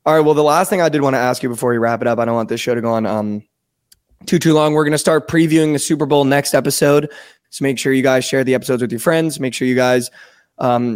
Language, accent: English, American